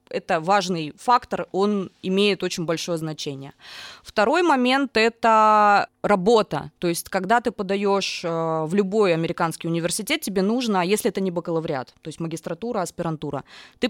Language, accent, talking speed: Russian, native, 140 wpm